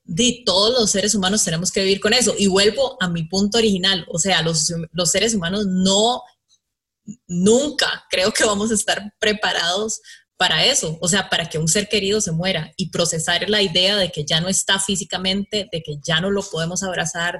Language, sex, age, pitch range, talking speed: Spanish, female, 20-39, 180-220 Hz, 200 wpm